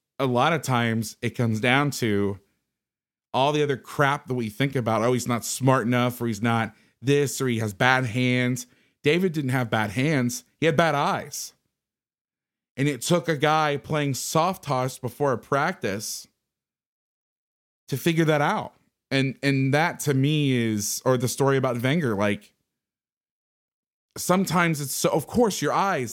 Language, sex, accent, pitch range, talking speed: English, male, American, 110-140 Hz, 170 wpm